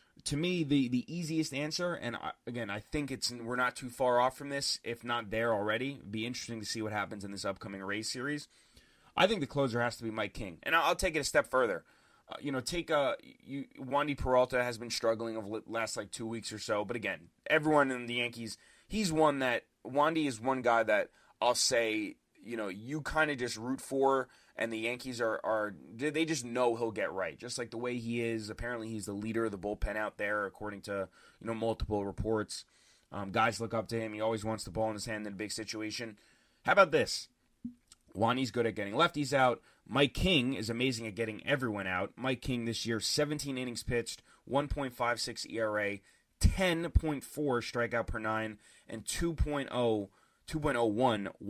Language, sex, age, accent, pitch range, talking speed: English, male, 20-39, American, 110-135 Hz, 205 wpm